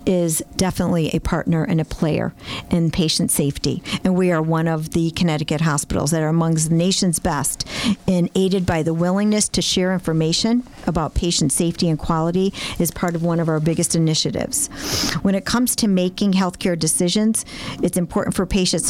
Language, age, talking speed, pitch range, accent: English, 50-69, 180 wpm, 160-190 Hz, American